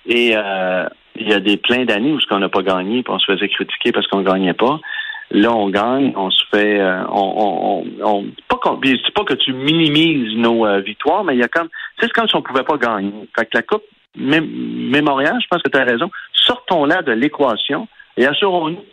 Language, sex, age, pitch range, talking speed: French, male, 40-59, 100-130 Hz, 230 wpm